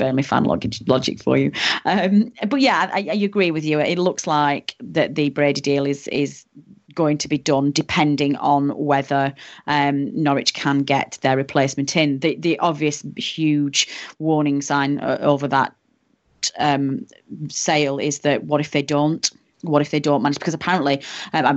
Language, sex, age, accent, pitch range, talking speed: English, female, 30-49, British, 140-155 Hz, 170 wpm